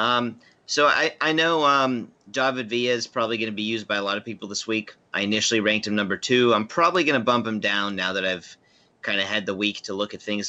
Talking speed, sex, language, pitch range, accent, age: 265 wpm, male, English, 100-120 Hz, American, 30-49